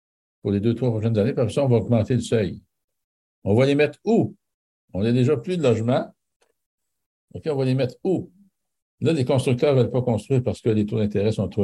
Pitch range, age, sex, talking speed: 105-135 Hz, 60-79, male, 230 wpm